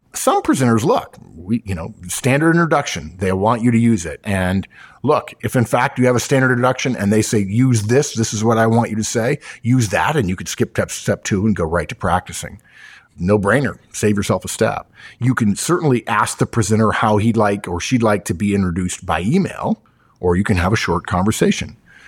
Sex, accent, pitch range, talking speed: male, American, 95-125 Hz, 215 wpm